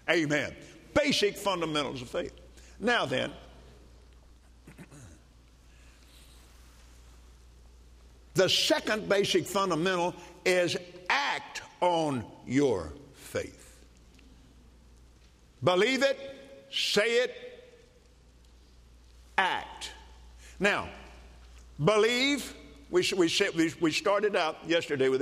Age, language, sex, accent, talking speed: 50-69, English, male, American, 65 wpm